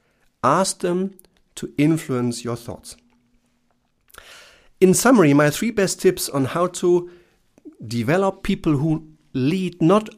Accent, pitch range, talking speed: German, 125-185 Hz, 120 wpm